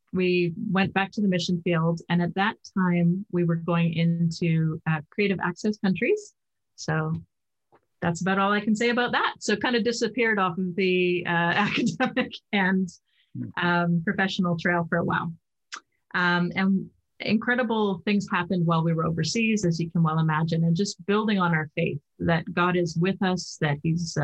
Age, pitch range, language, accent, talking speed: 30-49, 165-195 Hz, English, American, 180 wpm